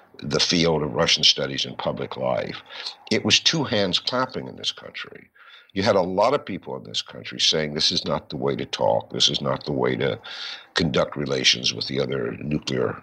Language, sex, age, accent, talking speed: English, male, 60-79, American, 205 wpm